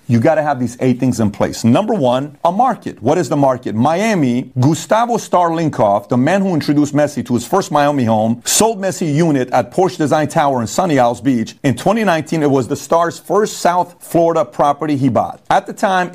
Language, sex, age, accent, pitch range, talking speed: English, male, 40-59, American, 125-160 Hz, 210 wpm